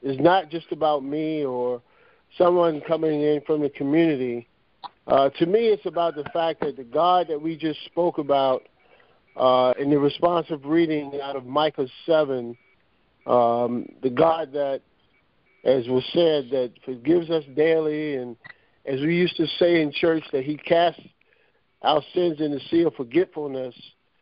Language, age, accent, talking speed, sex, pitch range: English, 50-69, American, 160 wpm, male, 135-170 Hz